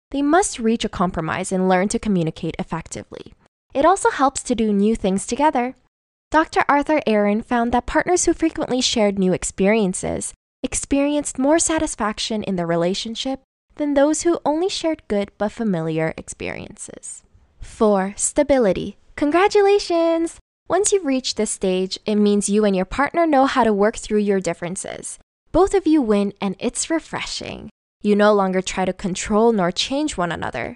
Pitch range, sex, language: 200-300 Hz, female, English